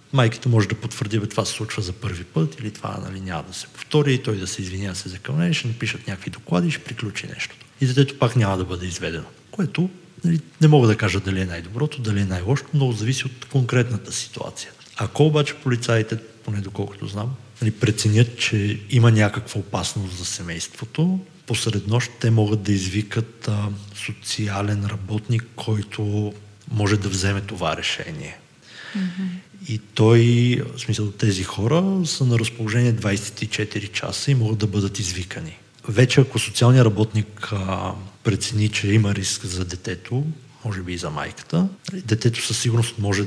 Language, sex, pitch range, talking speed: Bulgarian, male, 100-125 Hz, 165 wpm